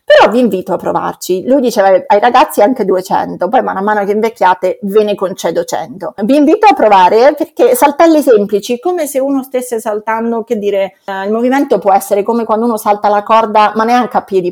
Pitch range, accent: 180-240 Hz, native